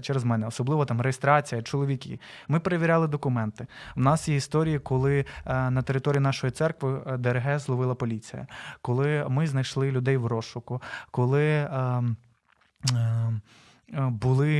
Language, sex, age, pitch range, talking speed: Ukrainian, male, 20-39, 120-140 Hz, 120 wpm